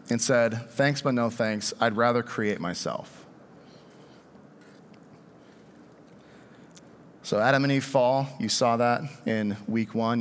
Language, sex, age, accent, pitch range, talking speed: English, male, 40-59, American, 120-165 Hz, 125 wpm